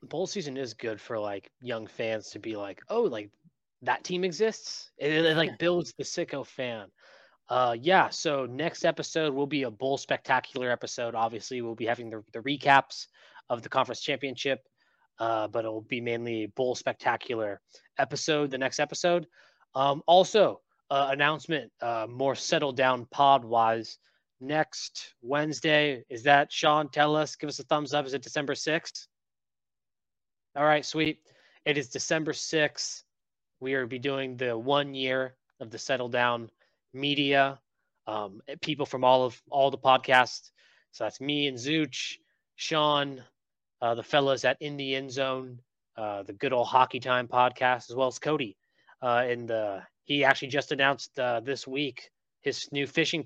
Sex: male